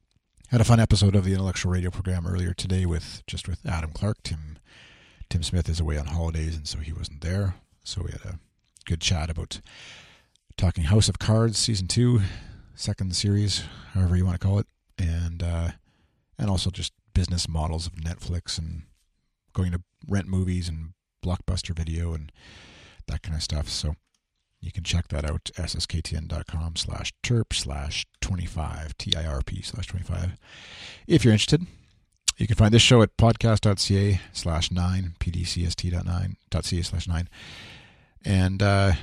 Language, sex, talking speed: English, male, 160 wpm